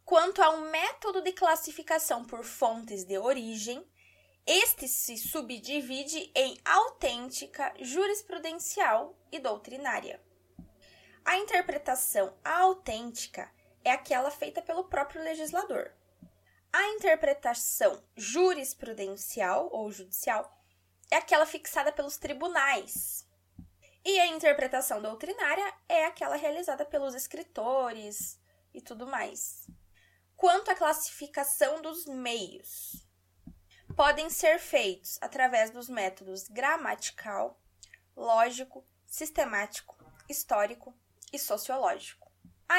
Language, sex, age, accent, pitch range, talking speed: Portuguese, female, 10-29, Brazilian, 225-325 Hz, 95 wpm